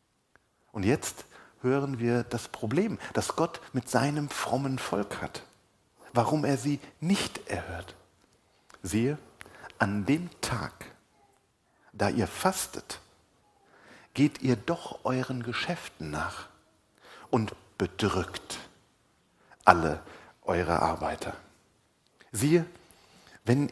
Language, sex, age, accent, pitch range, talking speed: German, male, 50-69, German, 100-145 Hz, 95 wpm